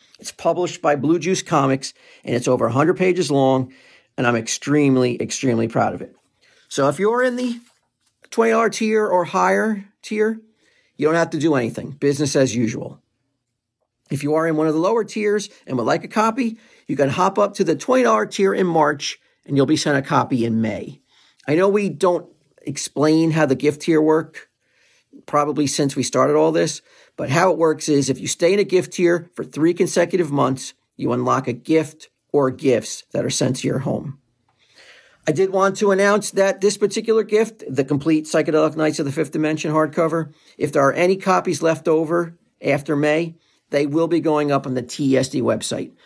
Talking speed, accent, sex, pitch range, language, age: 195 wpm, American, male, 135-180 Hz, English, 50-69